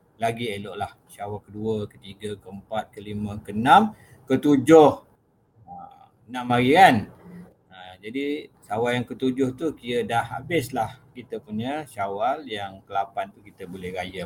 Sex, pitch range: male, 100-130 Hz